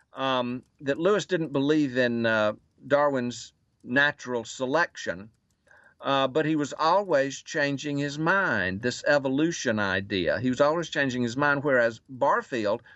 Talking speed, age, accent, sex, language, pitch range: 135 wpm, 50-69, American, male, English, 125-165 Hz